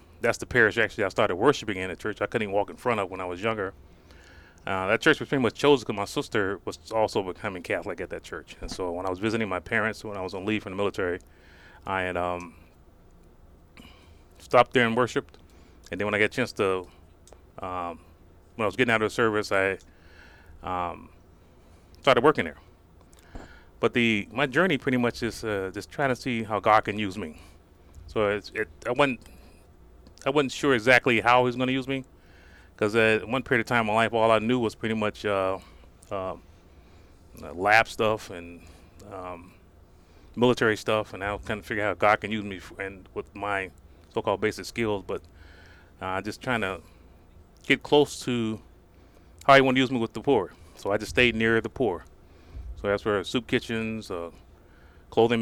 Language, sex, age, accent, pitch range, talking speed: English, male, 30-49, American, 85-115 Hz, 205 wpm